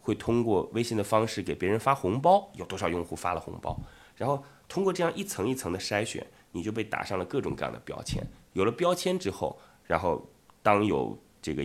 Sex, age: male, 20-39